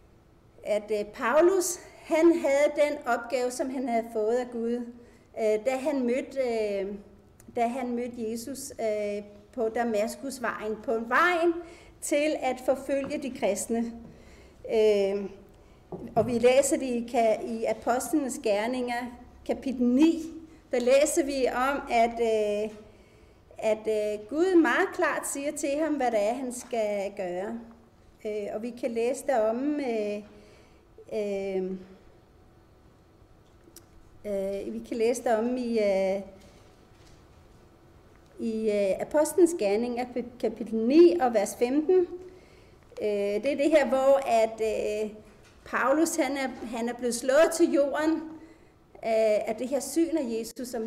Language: Danish